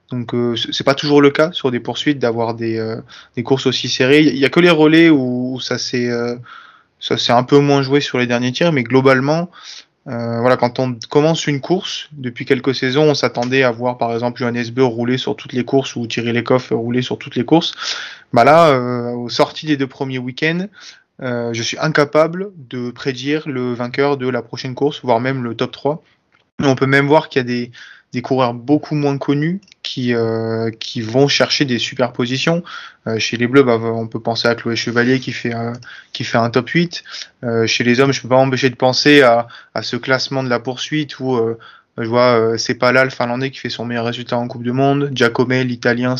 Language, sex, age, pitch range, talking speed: French, male, 20-39, 120-140 Hz, 225 wpm